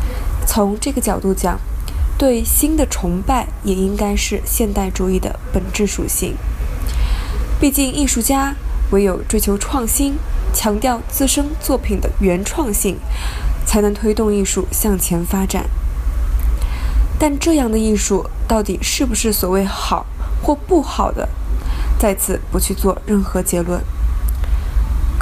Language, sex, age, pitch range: Chinese, female, 20-39, 170-235 Hz